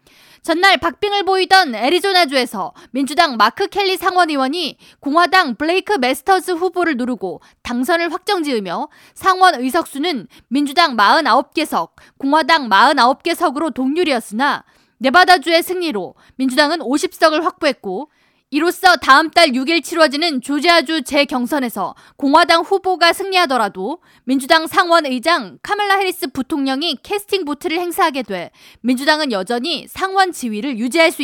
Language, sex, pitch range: Korean, female, 265-360 Hz